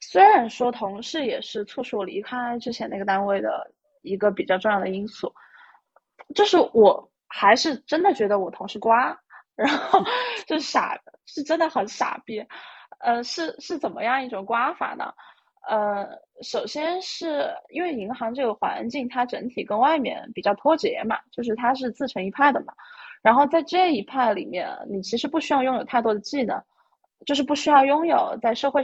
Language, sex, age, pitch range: Chinese, female, 20-39, 210-315 Hz